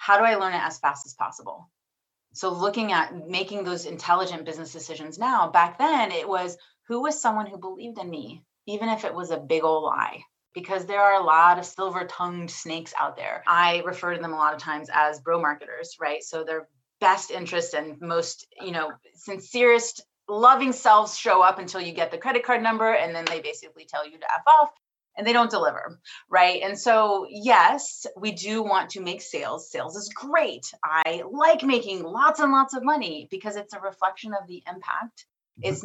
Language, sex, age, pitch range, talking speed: English, female, 30-49, 165-210 Hz, 205 wpm